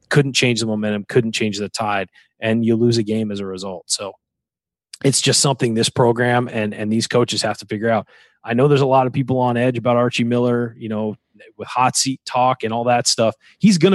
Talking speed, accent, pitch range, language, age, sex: 230 wpm, American, 110-135 Hz, English, 30-49, male